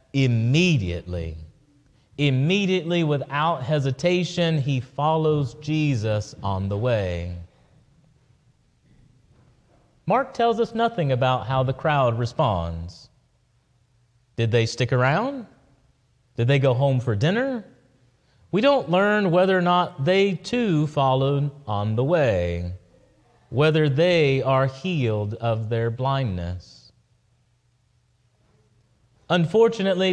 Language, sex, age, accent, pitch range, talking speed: English, male, 30-49, American, 120-165 Hz, 100 wpm